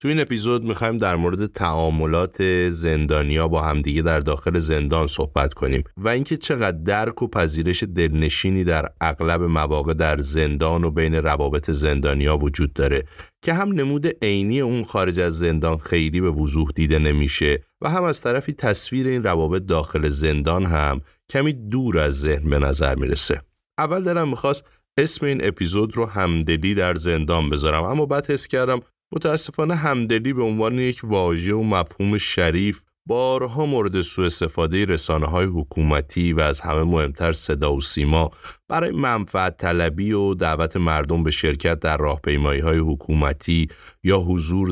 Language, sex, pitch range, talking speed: Persian, male, 80-105 Hz, 155 wpm